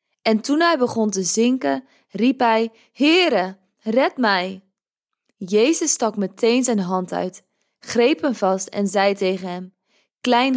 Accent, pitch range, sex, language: Dutch, 190-245 Hz, female, Dutch